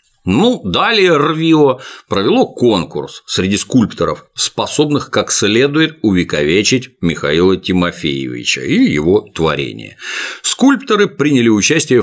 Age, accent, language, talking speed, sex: 50-69, native, Russian, 95 wpm, male